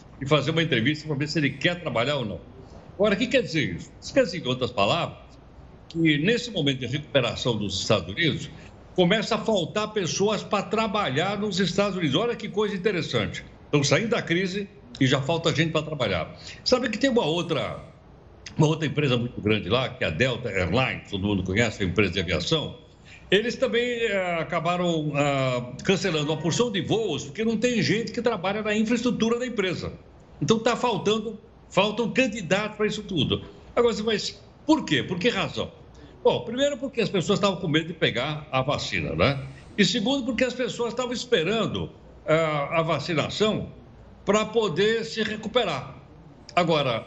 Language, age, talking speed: Portuguese, 60-79, 175 wpm